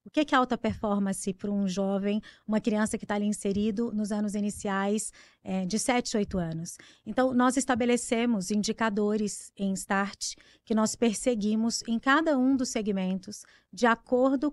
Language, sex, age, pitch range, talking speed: Portuguese, female, 20-39, 205-245 Hz, 155 wpm